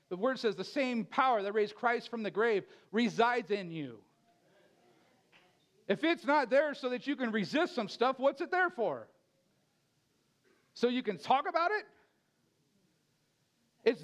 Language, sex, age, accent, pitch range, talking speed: English, male, 50-69, American, 190-260 Hz, 160 wpm